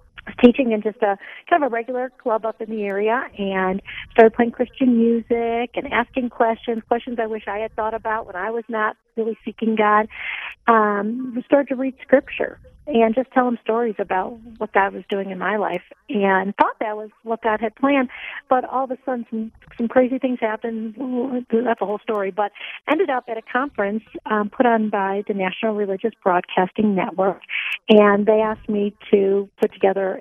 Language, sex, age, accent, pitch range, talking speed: English, female, 50-69, American, 205-245 Hz, 195 wpm